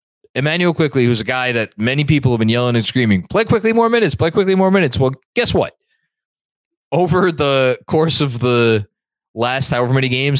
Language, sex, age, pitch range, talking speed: English, male, 20-39, 115-165 Hz, 190 wpm